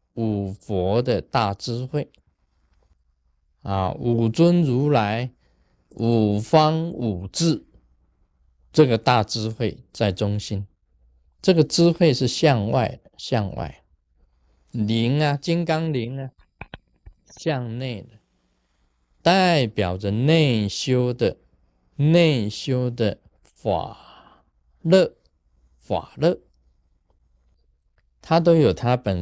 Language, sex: Chinese, male